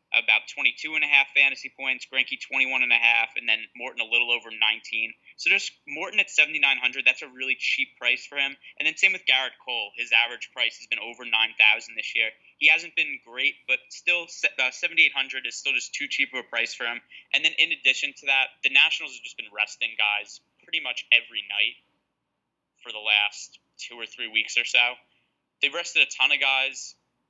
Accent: American